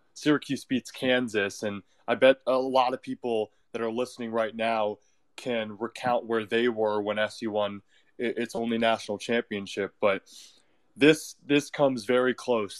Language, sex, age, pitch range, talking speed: English, male, 20-39, 115-135 Hz, 155 wpm